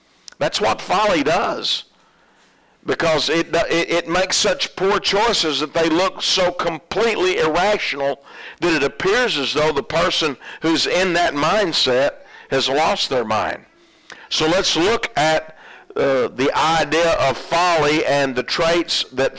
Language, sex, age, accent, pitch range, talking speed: English, male, 50-69, American, 140-185 Hz, 140 wpm